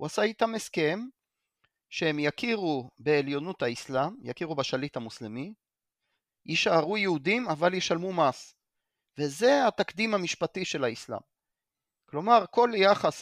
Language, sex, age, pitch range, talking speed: Hebrew, male, 40-59, 135-190 Hz, 110 wpm